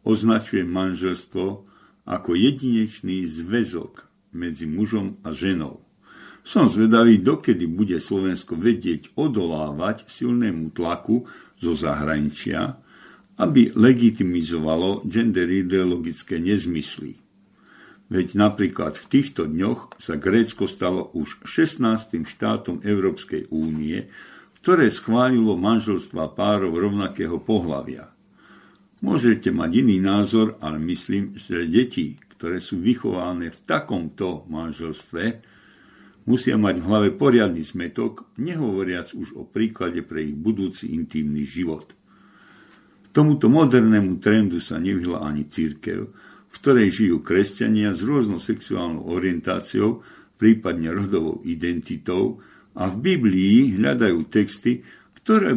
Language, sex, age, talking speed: Slovak, male, 50-69, 105 wpm